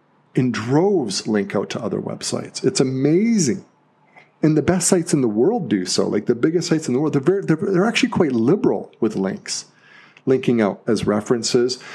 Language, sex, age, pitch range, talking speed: English, male, 40-59, 105-150 Hz, 185 wpm